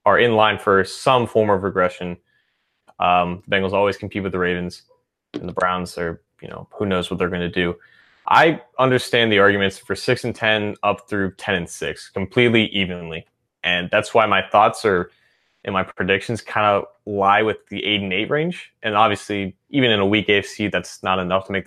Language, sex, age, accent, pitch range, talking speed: English, male, 20-39, American, 95-110 Hz, 210 wpm